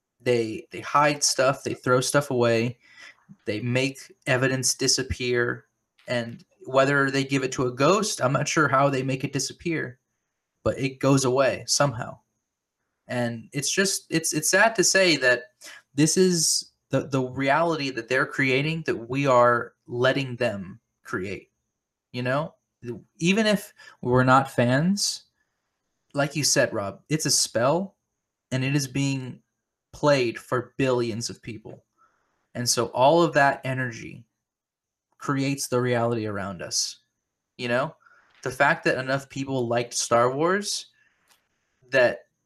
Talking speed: 145 wpm